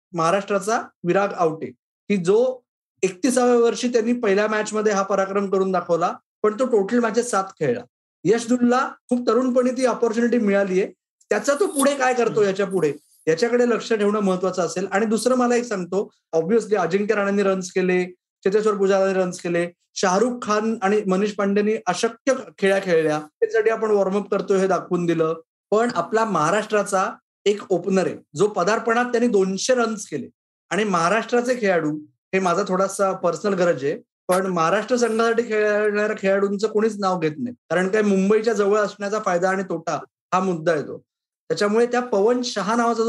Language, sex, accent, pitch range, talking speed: Marathi, male, native, 185-225 Hz, 155 wpm